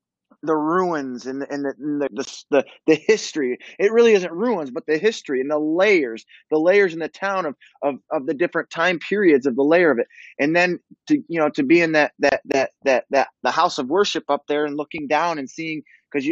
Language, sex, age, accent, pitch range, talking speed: English, male, 20-39, American, 140-190 Hz, 235 wpm